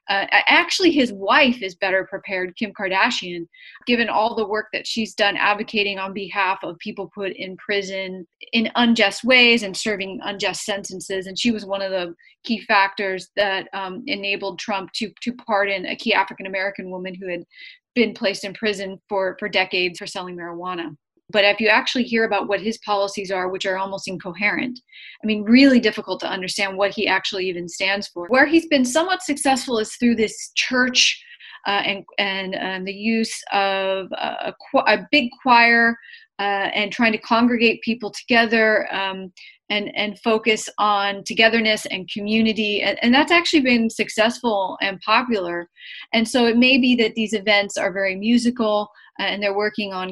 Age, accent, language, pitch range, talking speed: 30-49, American, English, 190-230 Hz, 175 wpm